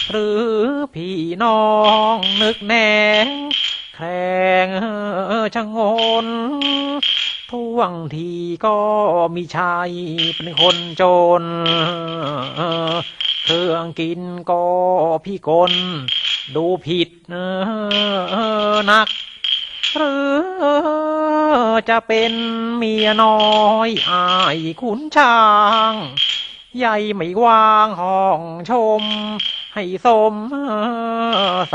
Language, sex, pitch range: Thai, male, 175-220 Hz